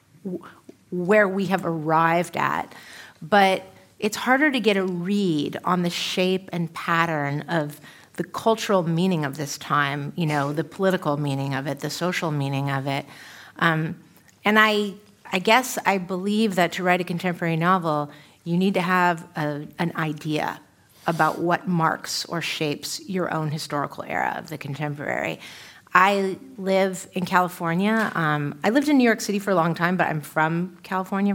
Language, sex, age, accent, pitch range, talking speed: English, female, 30-49, American, 150-185 Hz, 165 wpm